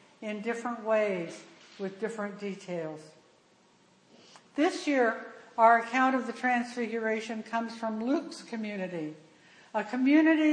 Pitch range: 205-260 Hz